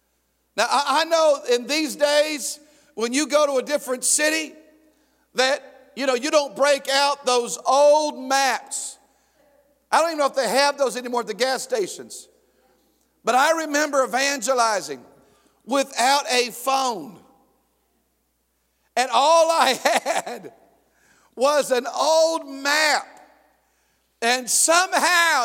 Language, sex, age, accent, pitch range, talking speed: English, male, 50-69, American, 255-300 Hz, 125 wpm